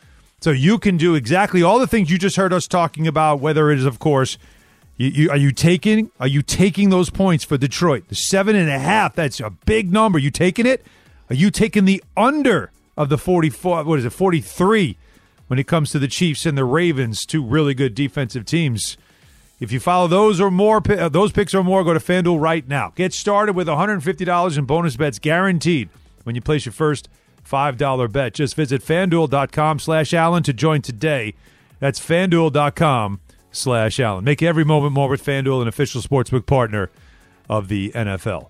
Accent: American